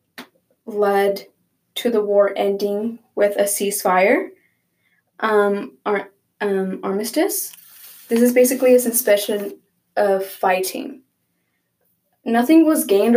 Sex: female